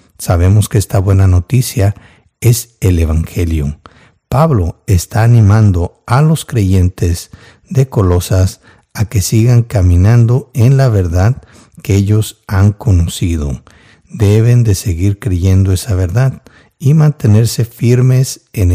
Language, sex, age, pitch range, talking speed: Spanish, male, 60-79, 95-120 Hz, 120 wpm